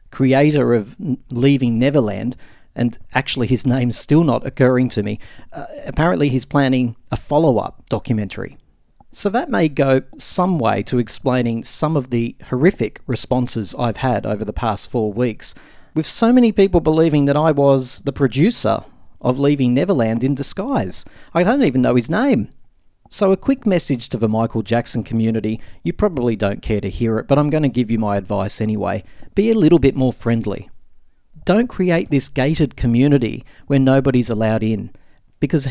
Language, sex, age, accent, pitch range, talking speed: English, male, 40-59, Australian, 115-145 Hz, 170 wpm